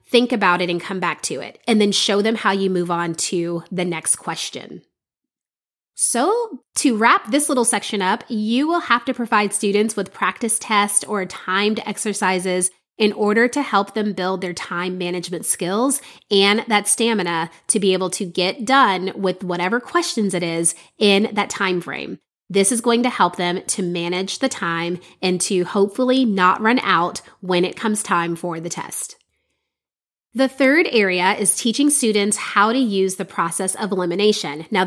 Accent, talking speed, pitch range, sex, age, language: American, 180 wpm, 185-230 Hz, female, 30-49, English